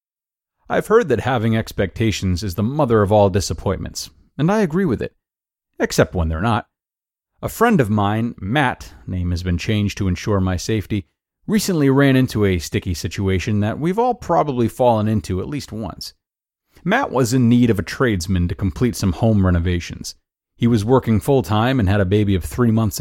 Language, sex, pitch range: English, male, 95-125 Hz